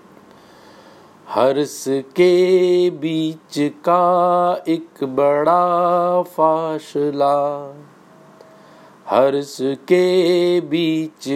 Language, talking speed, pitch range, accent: Hindi, 55 wpm, 140-180 Hz, native